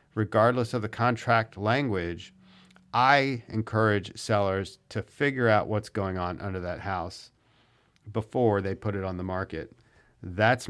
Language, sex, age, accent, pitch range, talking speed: English, male, 50-69, American, 105-125 Hz, 140 wpm